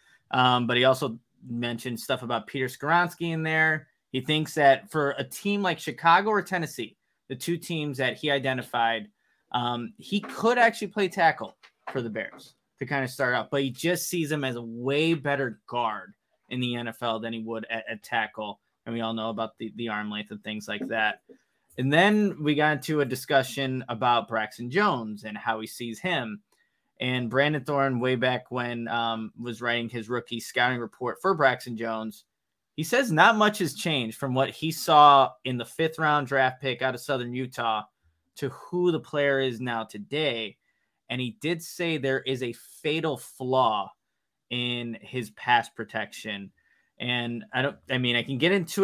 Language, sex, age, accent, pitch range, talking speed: English, male, 20-39, American, 120-155 Hz, 190 wpm